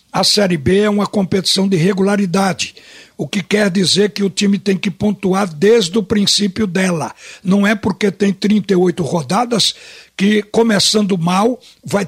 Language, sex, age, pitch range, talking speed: Portuguese, male, 60-79, 190-225 Hz, 160 wpm